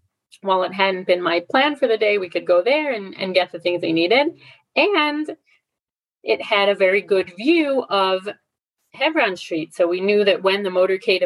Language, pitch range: English, 185-270 Hz